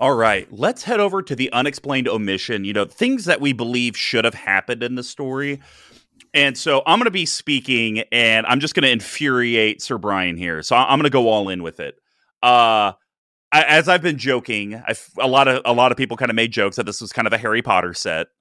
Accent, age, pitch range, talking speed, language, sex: American, 30-49, 115-140 Hz, 240 wpm, English, male